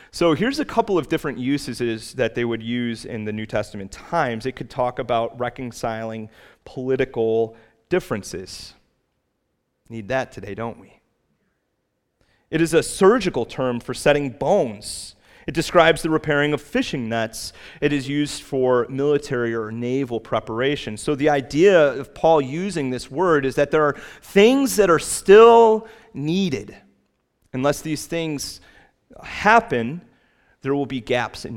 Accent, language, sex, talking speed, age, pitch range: American, English, male, 145 wpm, 30-49, 115-155 Hz